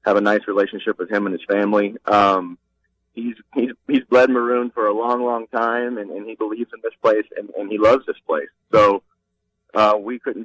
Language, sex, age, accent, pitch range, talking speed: English, male, 30-49, American, 110-150 Hz, 210 wpm